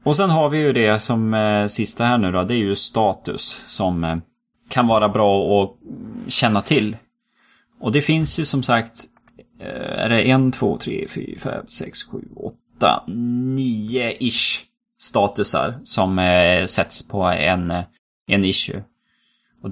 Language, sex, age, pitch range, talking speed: Swedish, male, 20-39, 105-130 Hz, 155 wpm